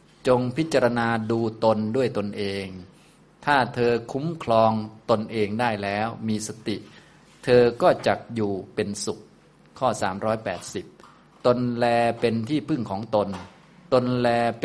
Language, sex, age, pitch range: Thai, male, 20-39, 105-120 Hz